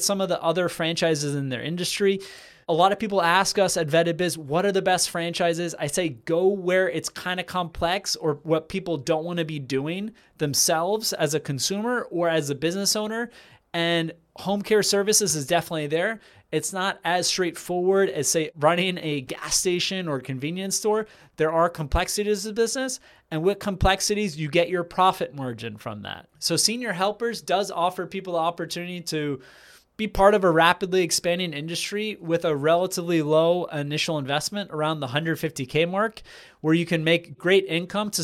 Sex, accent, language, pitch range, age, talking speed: male, American, English, 160-195 Hz, 30-49, 180 wpm